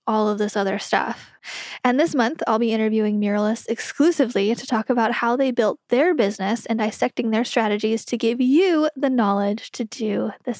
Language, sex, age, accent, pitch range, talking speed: English, female, 10-29, American, 225-290 Hz, 185 wpm